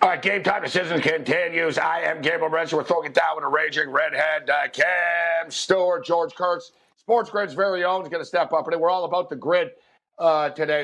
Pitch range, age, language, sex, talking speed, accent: 155-190 Hz, 50-69, English, male, 215 wpm, American